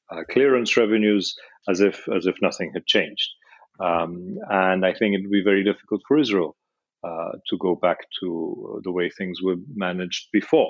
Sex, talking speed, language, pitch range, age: male, 180 wpm, English, 95-125 Hz, 40-59